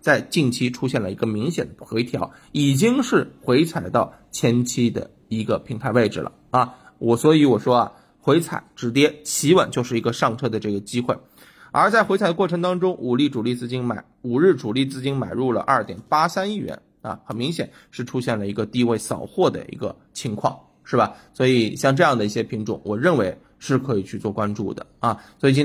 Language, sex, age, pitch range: Chinese, male, 20-39, 110-145 Hz